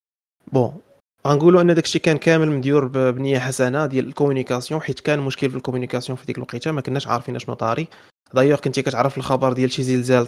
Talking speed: 185 wpm